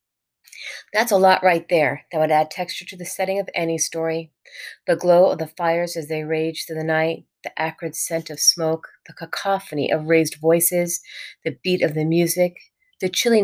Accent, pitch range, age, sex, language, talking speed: American, 155-185 Hz, 30-49, female, English, 190 wpm